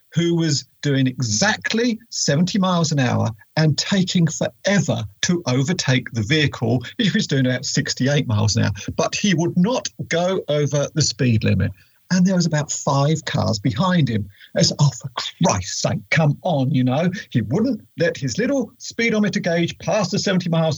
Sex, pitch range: male, 120-165 Hz